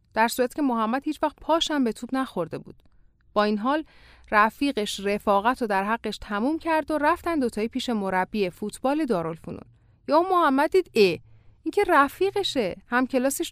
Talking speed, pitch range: 160 wpm, 200-280 Hz